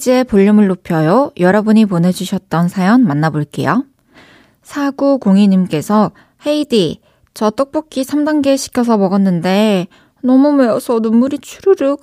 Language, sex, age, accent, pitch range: Korean, female, 20-39, native, 180-255 Hz